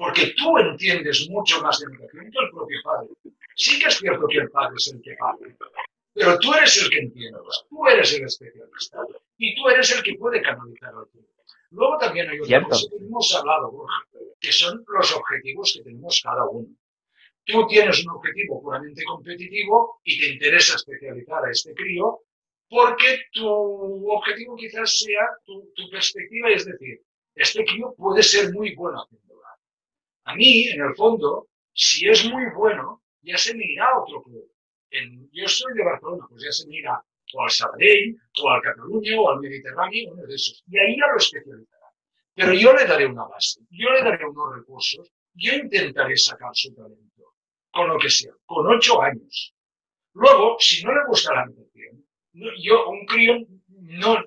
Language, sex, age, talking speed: English, male, 60-79, 180 wpm